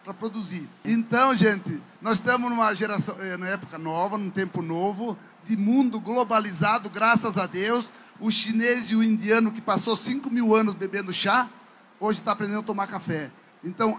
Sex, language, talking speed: male, Portuguese, 165 wpm